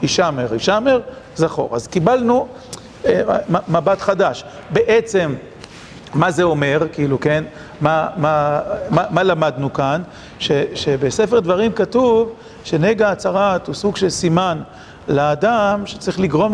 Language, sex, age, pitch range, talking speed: Hebrew, male, 40-59, 160-205 Hz, 120 wpm